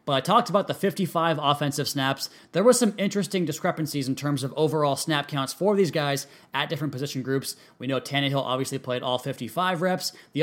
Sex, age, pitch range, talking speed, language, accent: male, 20-39, 130-165 Hz, 200 wpm, English, American